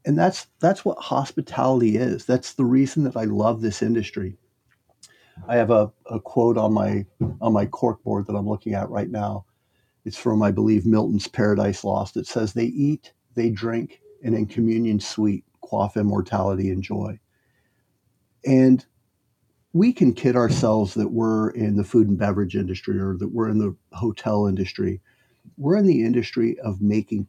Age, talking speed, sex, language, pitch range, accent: 50-69, 170 wpm, male, English, 105-130 Hz, American